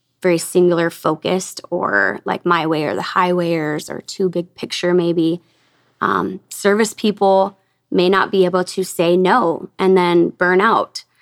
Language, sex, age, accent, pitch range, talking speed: English, female, 20-39, American, 175-195 Hz, 160 wpm